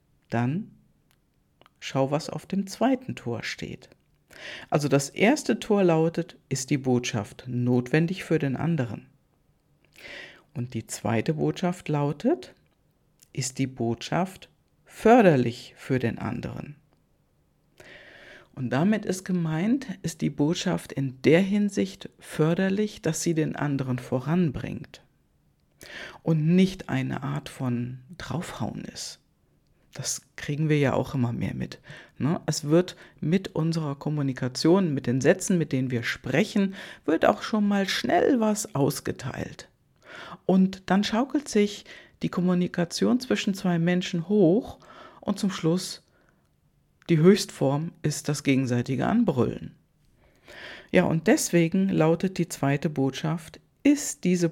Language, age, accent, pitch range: German, 50-69, German, 135-190 Hz